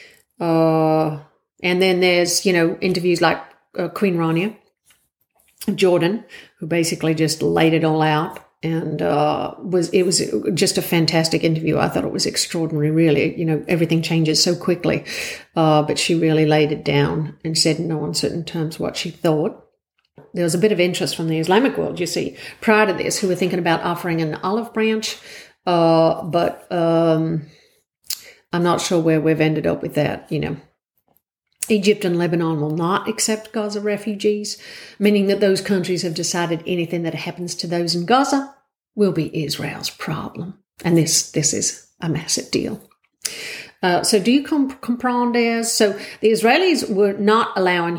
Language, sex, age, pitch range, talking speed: English, female, 50-69, 160-205 Hz, 170 wpm